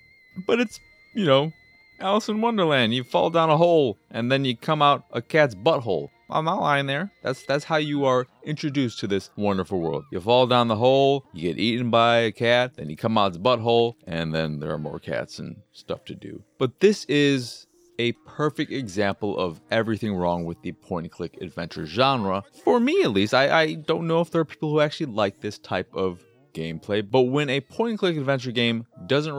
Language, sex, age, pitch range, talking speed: English, male, 30-49, 105-155 Hz, 205 wpm